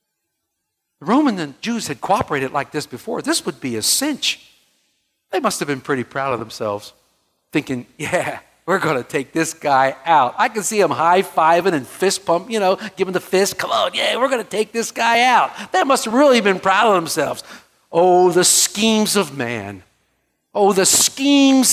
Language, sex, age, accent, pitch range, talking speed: English, male, 60-79, American, 135-215 Hz, 190 wpm